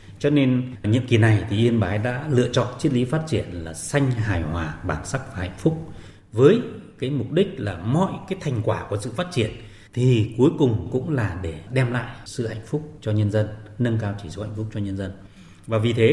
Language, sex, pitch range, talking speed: Vietnamese, male, 105-145 Hz, 235 wpm